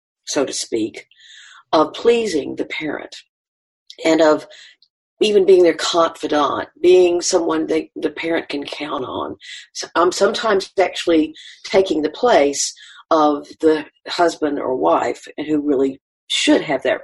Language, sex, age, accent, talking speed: English, female, 50-69, American, 135 wpm